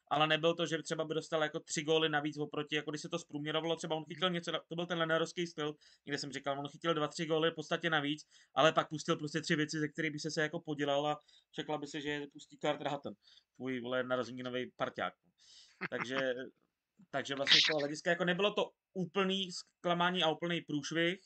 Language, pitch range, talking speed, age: Czech, 150-170 Hz, 215 wpm, 20-39